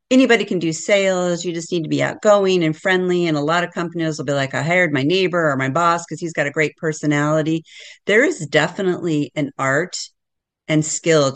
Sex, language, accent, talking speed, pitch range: female, English, American, 210 wpm, 150-185 Hz